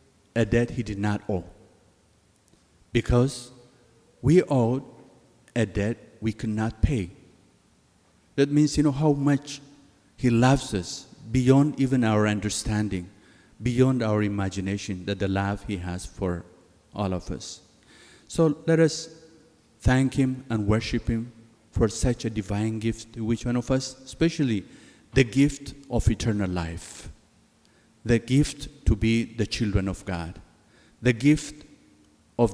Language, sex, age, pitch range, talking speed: English, male, 50-69, 105-130 Hz, 140 wpm